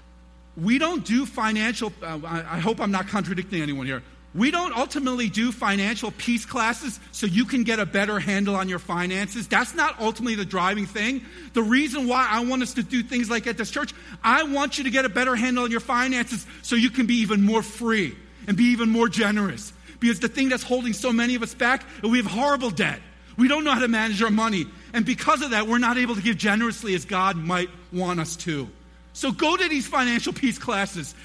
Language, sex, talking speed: English, male, 225 wpm